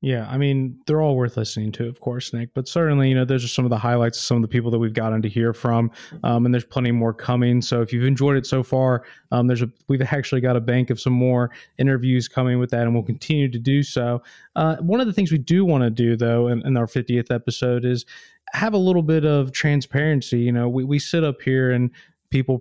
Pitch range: 125-150 Hz